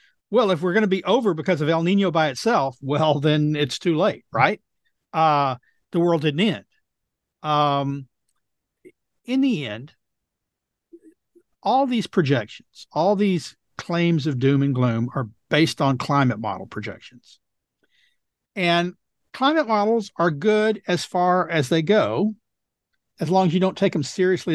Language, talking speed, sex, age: English, 150 wpm, male, 50-69